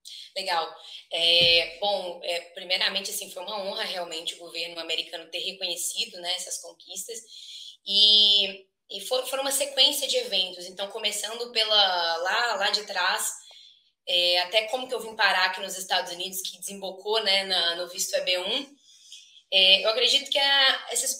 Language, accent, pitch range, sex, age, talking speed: Portuguese, Brazilian, 190-240 Hz, female, 20-39, 160 wpm